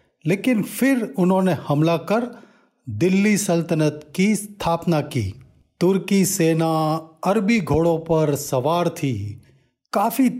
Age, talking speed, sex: 40-59, 105 wpm, male